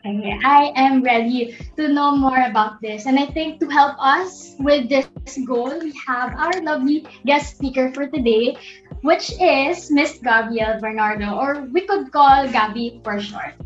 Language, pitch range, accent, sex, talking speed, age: Filipino, 235-295 Hz, native, female, 165 wpm, 20-39